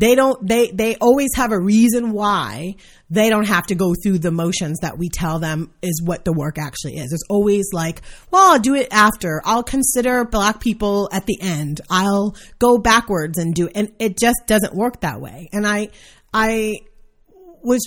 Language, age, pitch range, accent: English, 30-49, 150-205 Hz, American